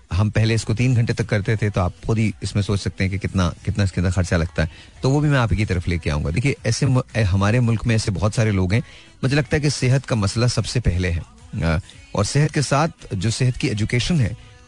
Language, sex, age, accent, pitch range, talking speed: Hindi, male, 30-49, native, 100-125 Hz, 250 wpm